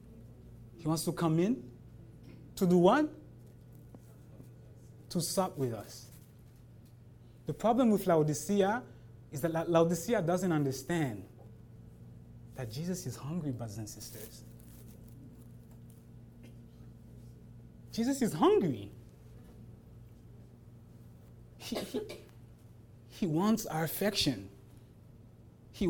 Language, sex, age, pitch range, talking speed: English, male, 30-49, 115-165 Hz, 85 wpm